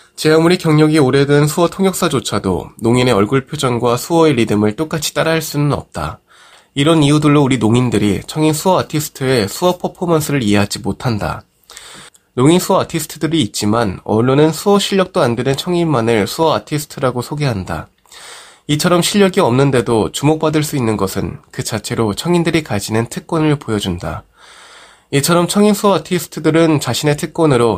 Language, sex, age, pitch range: Korean, male, 20-39, 115-165 Hz